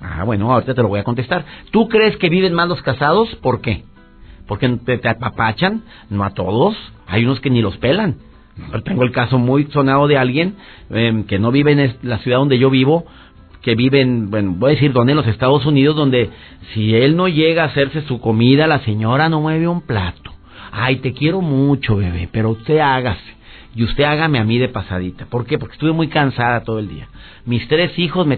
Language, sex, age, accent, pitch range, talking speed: Spanish, male, 50-69, Mexican, 110-170 Hz, 215 wpm